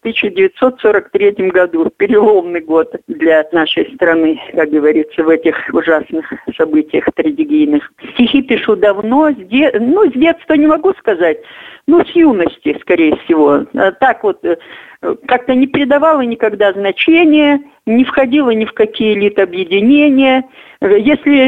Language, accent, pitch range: Russian, native, 185-275 Hz